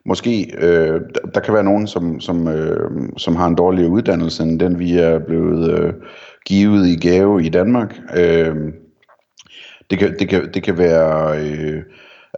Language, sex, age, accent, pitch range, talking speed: Danish, male, 30-49, native, 80-95 Hz, 170 wpm